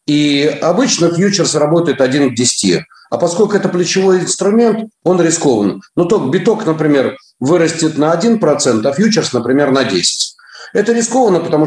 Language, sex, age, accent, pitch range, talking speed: Russian, male, 40-59, native, 150-200 Hz, 155 wpm